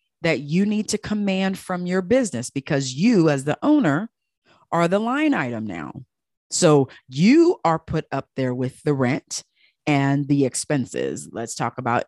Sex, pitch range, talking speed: female, 140-190 Hz, 165 wpm